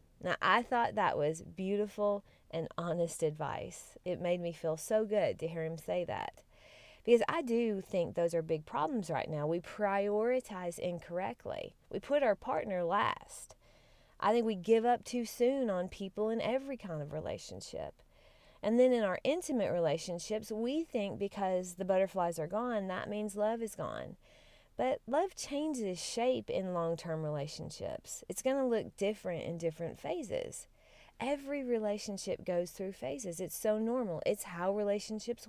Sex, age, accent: female, 30-49, American